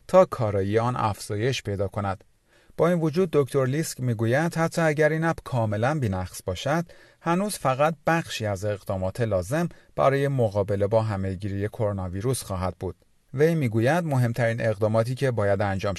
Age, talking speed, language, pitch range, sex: 40-59, 150 wpm, Persian, 100-145 Hz, male